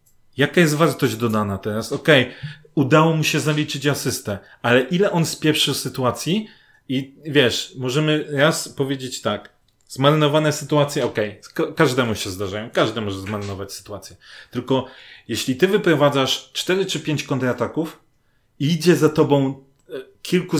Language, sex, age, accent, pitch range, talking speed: Polish, male, 30-49, native, 115-150 Hz, 135 wpm